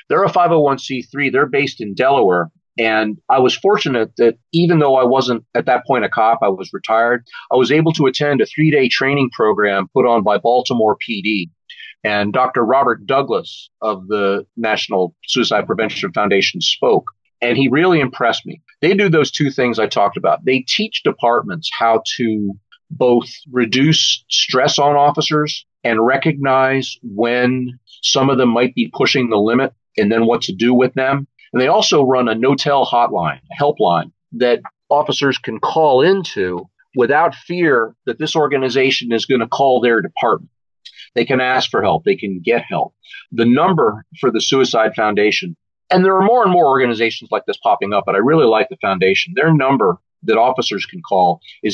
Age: 40-59